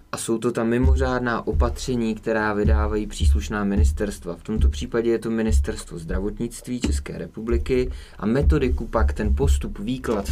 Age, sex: 20-39, male